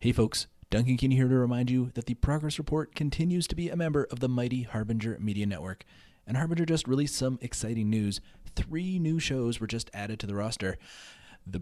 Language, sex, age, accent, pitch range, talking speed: English, male, 30-49, American, 100-135 Hz, 205 wpm